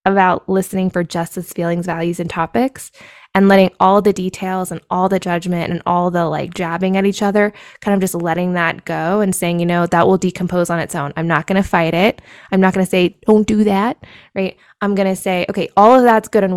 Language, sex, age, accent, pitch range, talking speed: English, female, 20-39, American, 175-205 Hz, 230 wpm